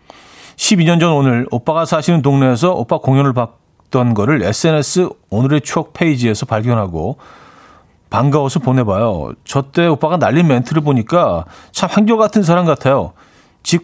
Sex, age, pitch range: male, 40-59, 115-165 Hz